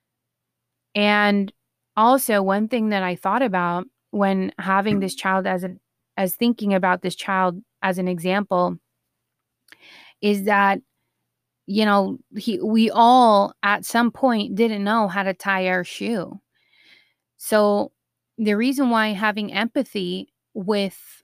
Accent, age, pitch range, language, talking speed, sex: American, 20-39, 195-230 Hz, English, 130 wpm, female